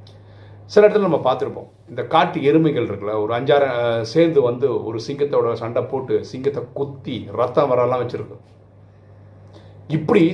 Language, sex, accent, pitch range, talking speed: Tamil, male, native, 105-160 Hz, 130 wpm